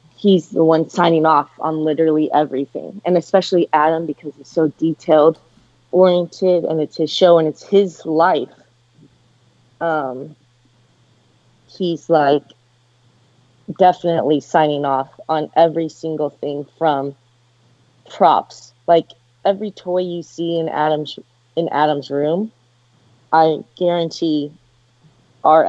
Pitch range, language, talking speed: 125-170 Hz, English, 115 wpm